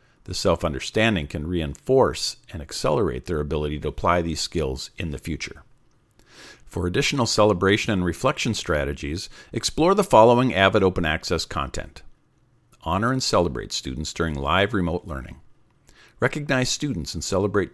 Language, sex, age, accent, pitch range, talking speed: English, male, 50-69, American, 85-125 Hz, 135 wpm